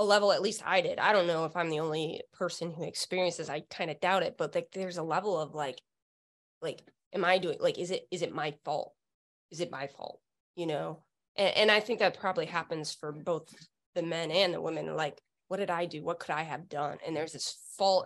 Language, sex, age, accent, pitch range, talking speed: English, female, 20-39, American, 165-210 Hz, 245 wpm